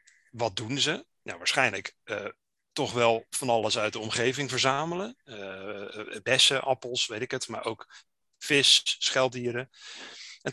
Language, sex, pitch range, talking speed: Dutch, male, 120-150 Hz, 140 wpm